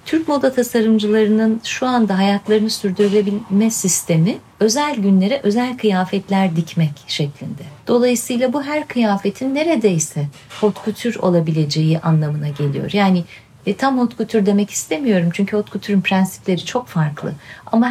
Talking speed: 125 wpm